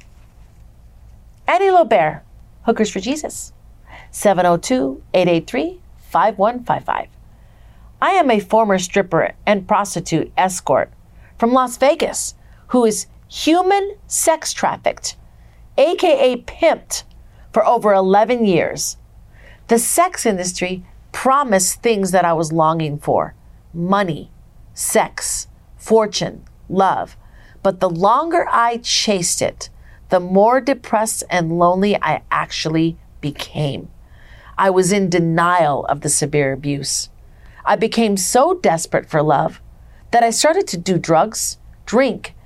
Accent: American